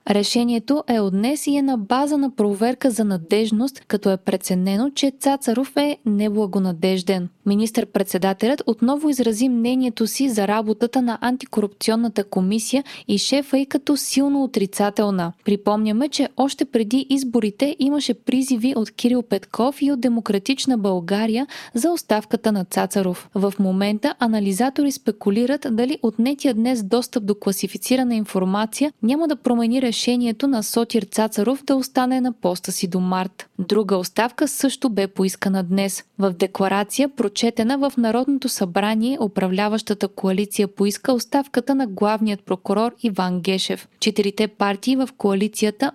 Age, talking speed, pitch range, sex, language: 20-39, 135 wpm, 200-255 Hz, female, Bulgarian